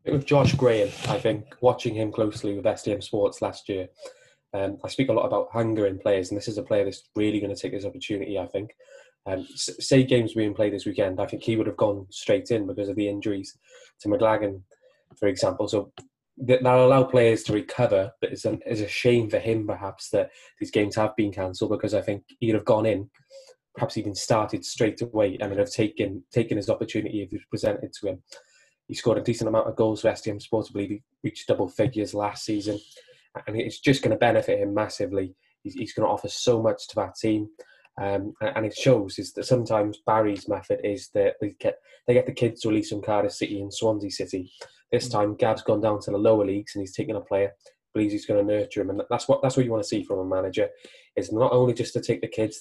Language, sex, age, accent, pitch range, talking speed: English, male, 20-39, British, 105-125 Hz, 240 wpm